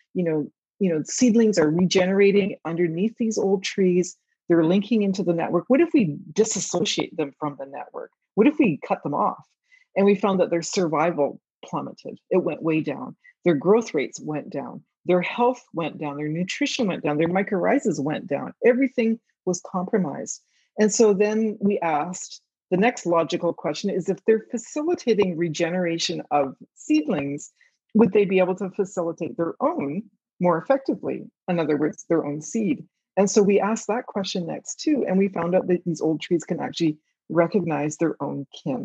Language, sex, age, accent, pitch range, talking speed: English, female, 40-59, American, 170-230 Hz, 180 wpm